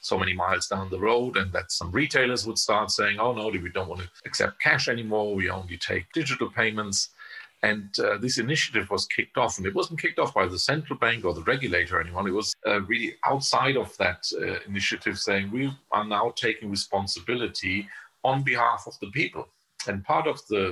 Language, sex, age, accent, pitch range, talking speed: English, male, 50-69, German, 100-125 Hz, 205 wpm